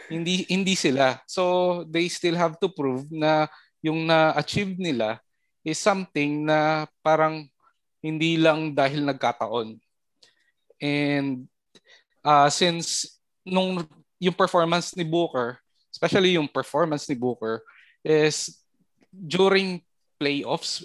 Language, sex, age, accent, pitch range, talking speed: English, male, 20-39, Filipino, 135-160 Hz, 105 wpm